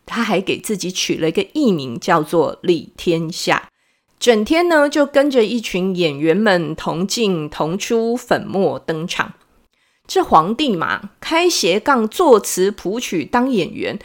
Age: 30-49